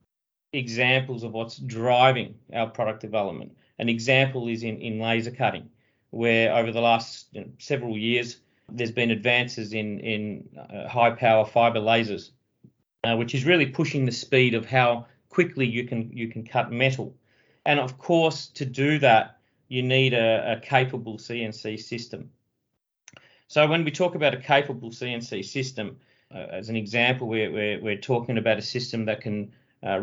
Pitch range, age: 110-130 Hz, 40-59